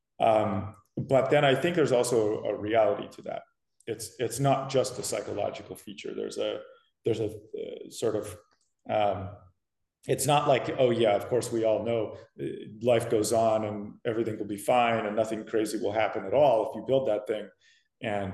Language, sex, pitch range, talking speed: English, male, 105-130 Hz, 185 wpm